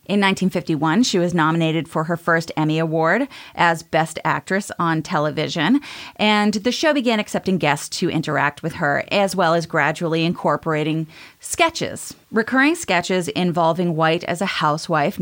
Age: 30-49